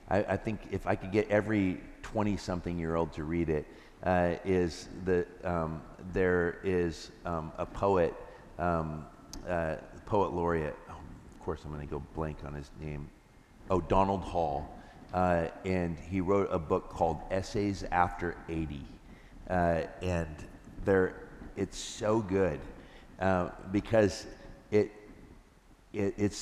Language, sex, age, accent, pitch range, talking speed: English, male, 50-69, American, 85-100 Hz, 130 wpm